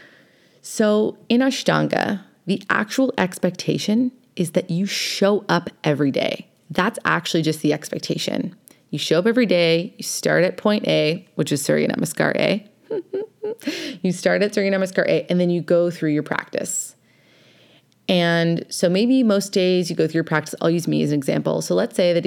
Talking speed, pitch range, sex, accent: 180 wpm, 170-225 Hz, female, American